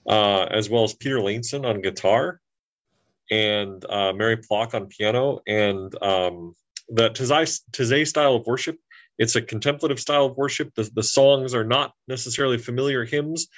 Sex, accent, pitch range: male, American, 110-130 Hz